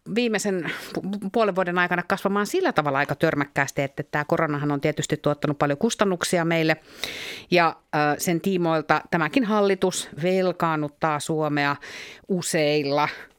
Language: Finnish